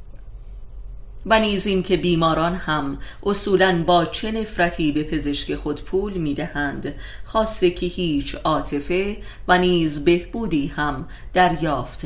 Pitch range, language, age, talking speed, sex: 155-190 Hz, Persian, 30-49, 115 wpm, female